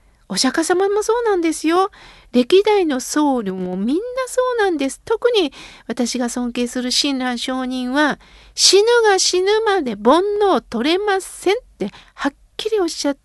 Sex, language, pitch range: female, Japanese, 250-360 Hz